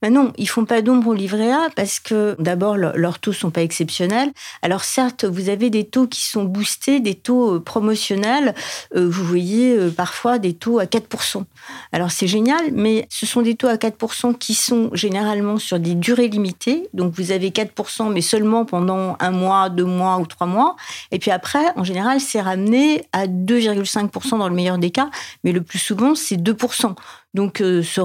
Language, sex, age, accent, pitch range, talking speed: French, female, 50-69, French, 180-230 Hz, 195 wpm